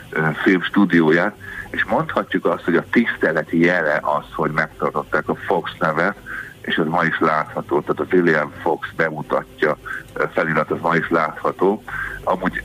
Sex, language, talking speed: male, Hungarian, 145 wpm